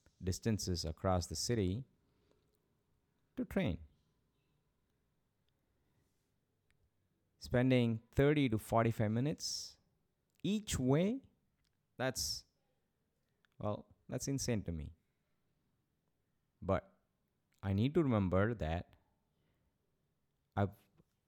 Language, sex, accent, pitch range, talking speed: English, male, Indian, 90-125 Hz, 75 wpm